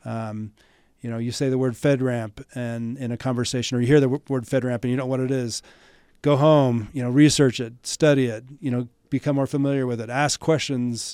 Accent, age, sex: American, 40-59, male